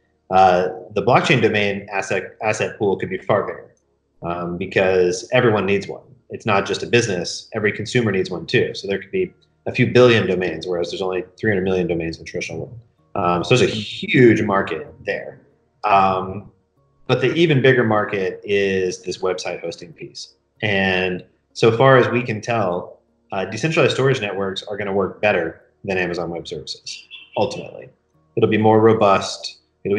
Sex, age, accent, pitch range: male, 30-49, American, 95-115 Hz